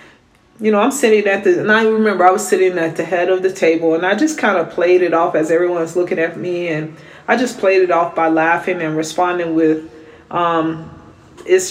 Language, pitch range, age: English, 160-205 Hz, 40-59